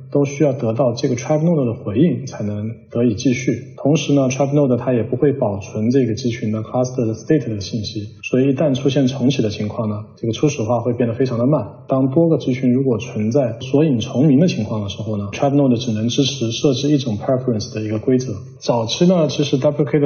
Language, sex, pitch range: Chinese, male, 115-140 Hz